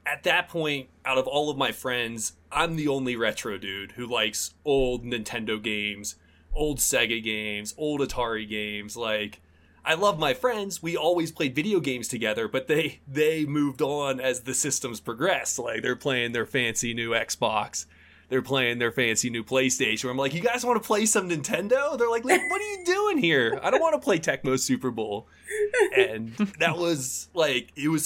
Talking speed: 190 wpm